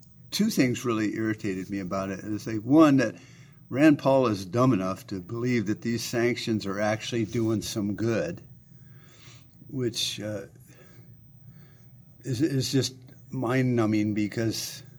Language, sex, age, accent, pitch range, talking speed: English, male, 50-69, American, 115-140 Hz, 125 wpm